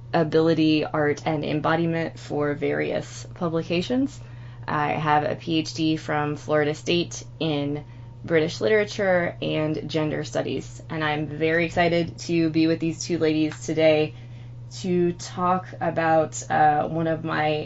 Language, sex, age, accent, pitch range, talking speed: English, female, 20-39, American, 140-165 Hz, 130 wpm